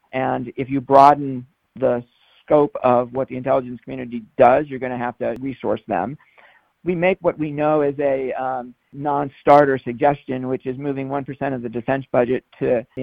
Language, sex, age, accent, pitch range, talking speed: English, male, 50-69, American, 125-155 Hz, 180 wpm